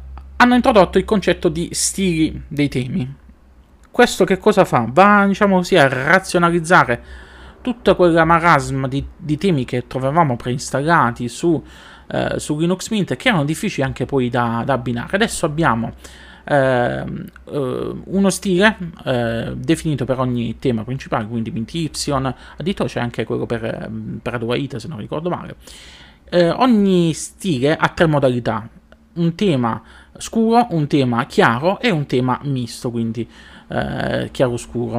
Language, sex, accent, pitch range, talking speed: Italian, male, native, 120-175 Hz, 145 wpm